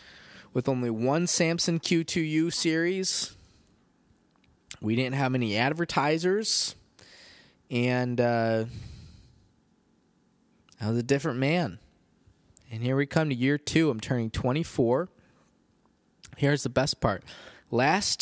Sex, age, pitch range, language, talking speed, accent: male, 20-39, 105-135 Hz, English, 110 wpm, American